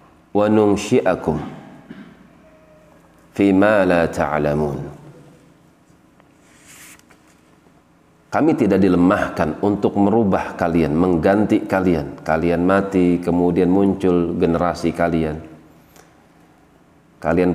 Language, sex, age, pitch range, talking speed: Indonesian, male, 40-59, 85-100 Hz, 60 wpm